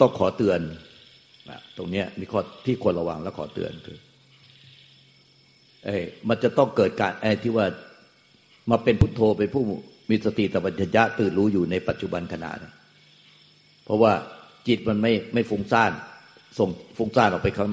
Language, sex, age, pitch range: Thai, male, 60-79, 95-125 Hz